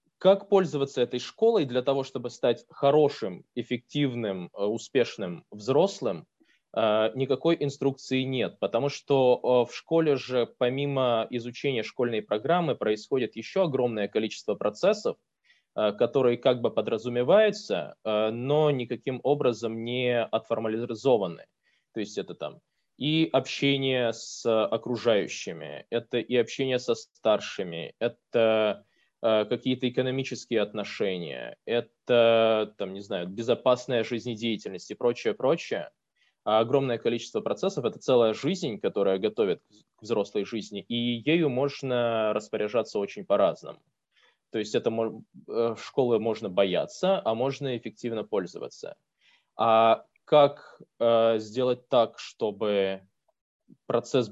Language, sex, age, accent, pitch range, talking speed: Russian, male, 20-39, native, 115-135 Hz, 110 wpm